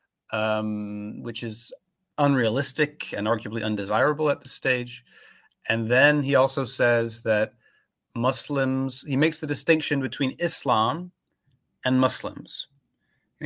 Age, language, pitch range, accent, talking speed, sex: 30-49, English, 110-140 Hz, American, 115 wpm, male